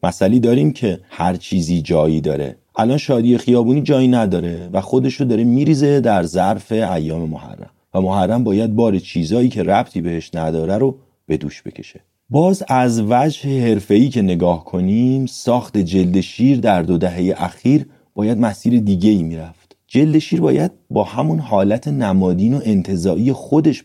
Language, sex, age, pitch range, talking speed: Persian, male, 30-49, 85-120 Hz, 155 wpm